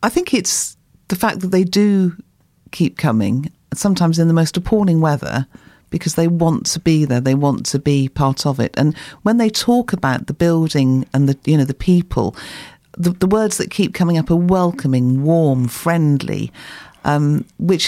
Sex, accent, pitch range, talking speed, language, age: female, British, 145-185 Hz, 185 wpm, English, 50-69